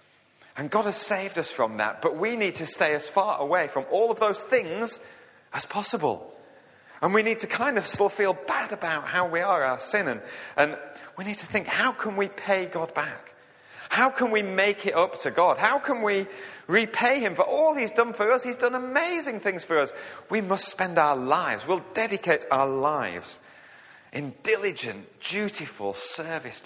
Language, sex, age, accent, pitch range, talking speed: English, male, 30-49, British, 130-205 Hz, 195 wpm